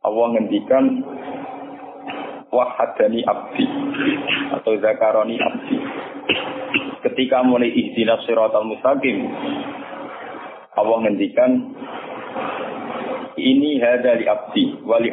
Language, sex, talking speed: Indonesian, male, 75 wpm